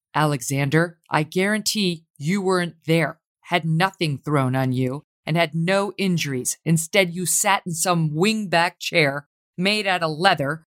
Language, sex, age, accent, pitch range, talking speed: English, female, 50-69, American, 160-210 Hz, 145 wpm